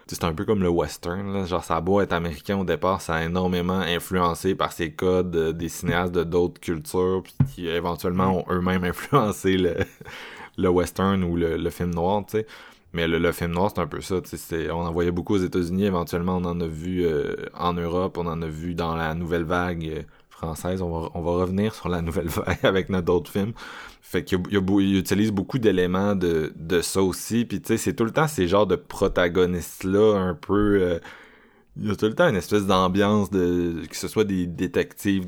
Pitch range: 85-95 Hz